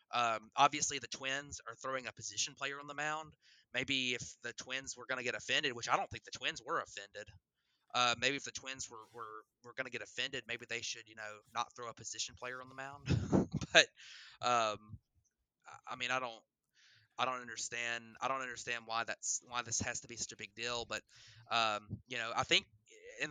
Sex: male